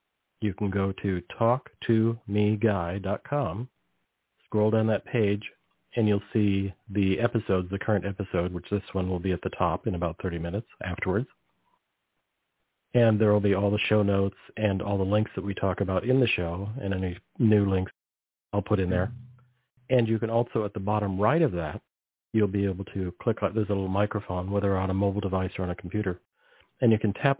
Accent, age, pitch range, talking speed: American, 40-59, 95-110 Hz, 195 wpm